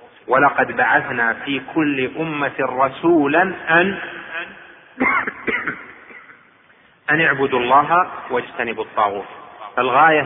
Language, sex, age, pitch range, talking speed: Arabic, male, 30-49, 135-165 Hz, 75 wpm